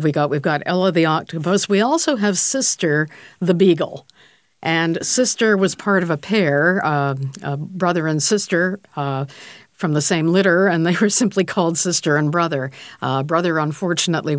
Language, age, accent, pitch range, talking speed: English, 50-69, American, 145-185 Hz, 170 wpm